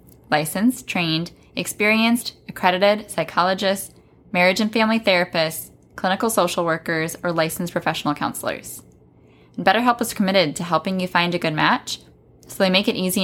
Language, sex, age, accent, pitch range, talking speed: English, female, 10-29, American, 155-190 Hz, 140 wpm